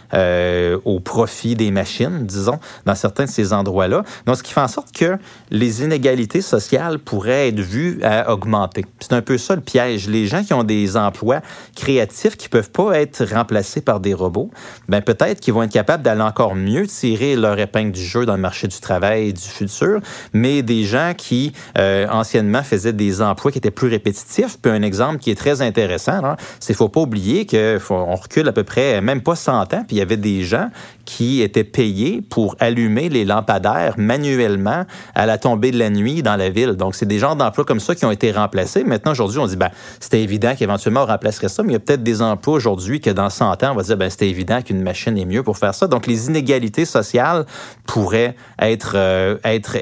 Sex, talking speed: male, 220 wpm